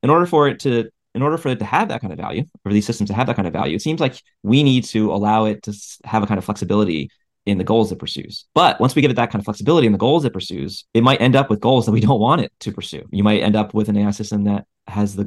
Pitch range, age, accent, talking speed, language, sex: 100-115 Hz, 30-49, American, 320 wpm, English, male